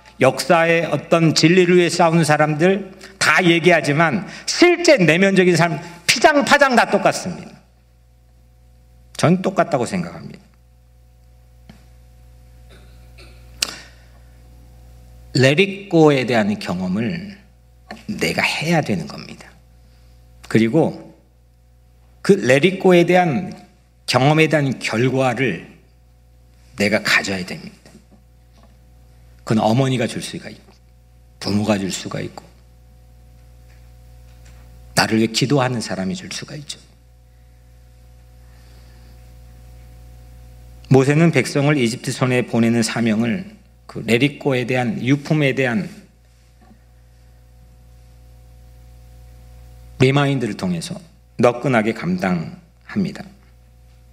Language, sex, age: Korean, male, 50-69